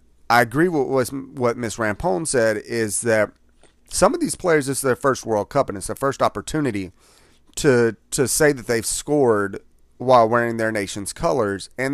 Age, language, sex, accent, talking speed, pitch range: 30-49, English, male, American, 180 wpm, 110-145 Hz